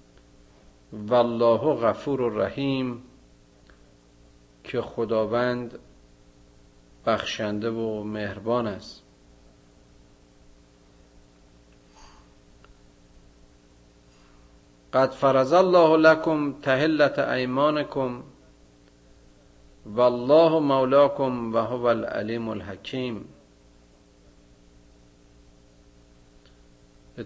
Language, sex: Persian, male